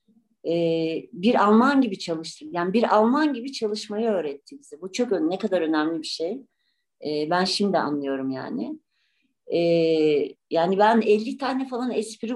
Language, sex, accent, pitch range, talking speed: Turkish, female, native, 155-230 Hz, 150 wpm